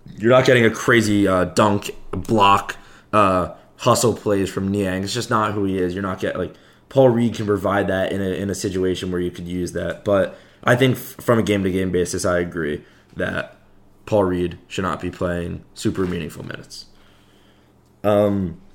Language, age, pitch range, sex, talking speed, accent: English, 20-39, 95-120 Hz, male, 195 wpm, American